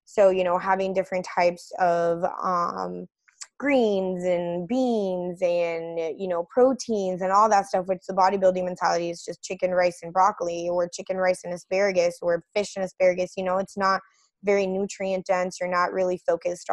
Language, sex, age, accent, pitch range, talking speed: English, female, 20-39, American, 180-200 Hz, 175 wpm